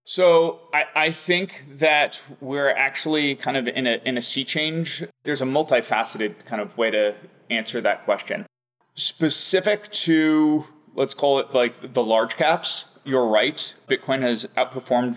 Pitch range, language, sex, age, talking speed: 125-150 Hz, English, male, 20-39, 155 wpm